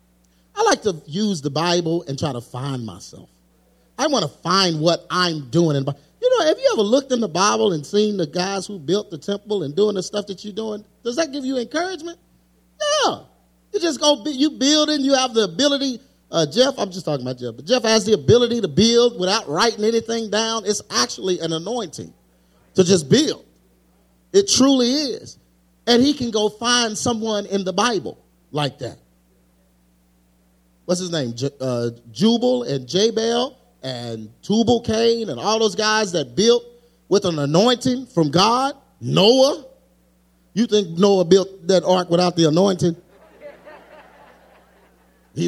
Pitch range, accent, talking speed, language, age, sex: 150-240 Hz, American, 175 wpm, English, 40-59, male